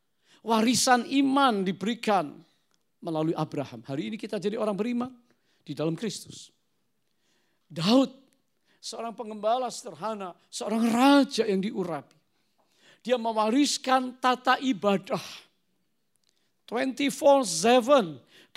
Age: 50-69